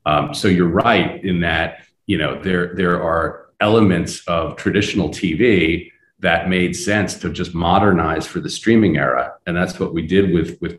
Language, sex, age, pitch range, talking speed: Polish, male, 40-59, 80-100 Hz, 180 wpm